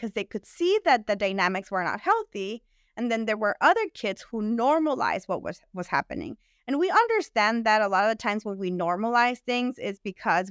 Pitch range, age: 190-255 Hz, 20-39